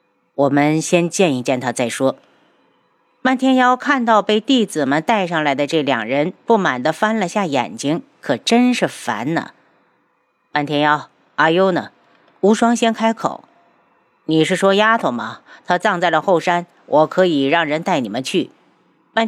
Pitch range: 160-225 Hz